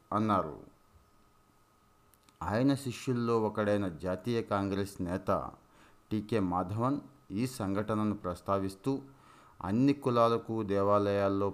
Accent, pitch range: native, 95-115 Hz